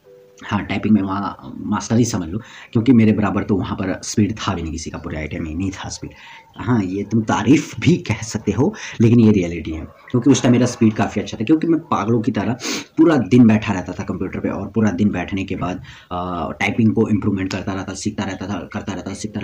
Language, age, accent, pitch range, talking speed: Hindi, 30-49, native, 95-115 Hz, 240 wpm